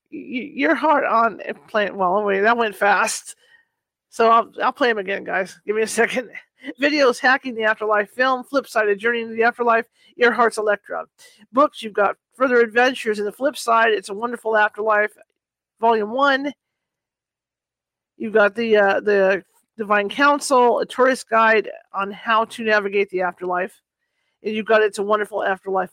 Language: English